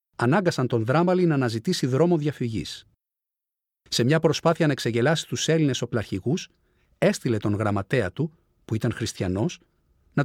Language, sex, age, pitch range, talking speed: Greek, male, 40-59, 125-175 Hz, 135 wpm